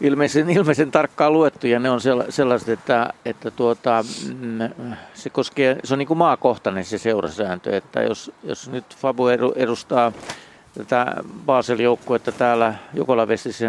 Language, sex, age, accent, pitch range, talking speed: Finnish, male, 50-69, native, 110-130 Hz, 130 wpm